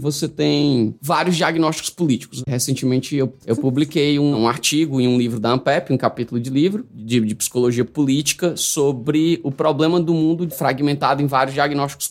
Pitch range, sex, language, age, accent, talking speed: 125-155 Hz, male, Portuguese, 20-39, Brazilian, 170 wpm